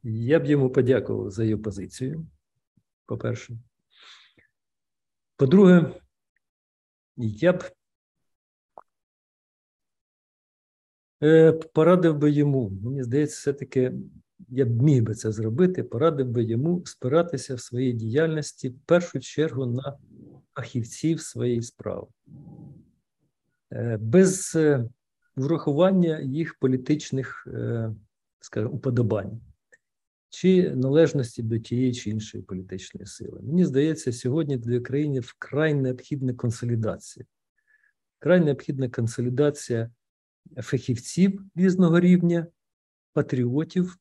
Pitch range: 110-155 Hz